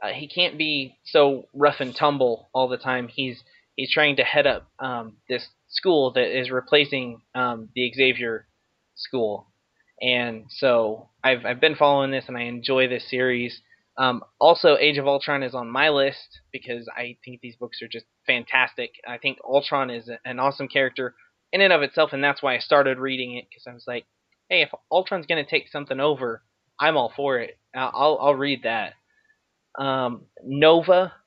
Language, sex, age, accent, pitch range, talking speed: English, male, 20-39, American, 125-145 Hz, 185 wpm